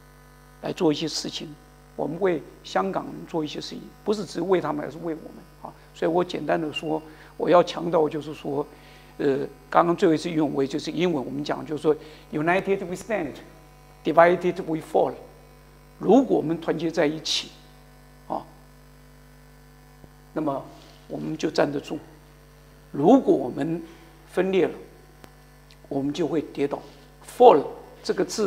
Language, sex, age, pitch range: Chinese, male, 60-79, 150-180 Hz